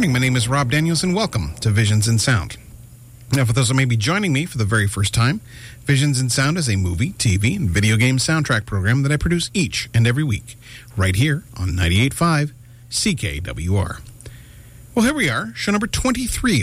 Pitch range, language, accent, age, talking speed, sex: 115-155 Hz, English, American, 40-59, 200 wpm, male